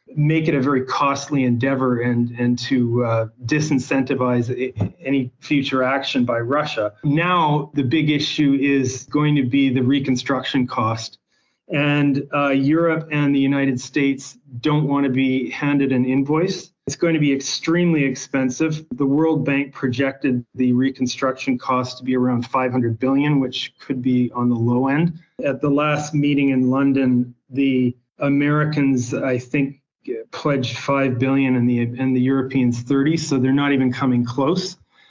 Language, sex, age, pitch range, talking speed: English, male, 30-49, 130-145 Hz, 155 wpm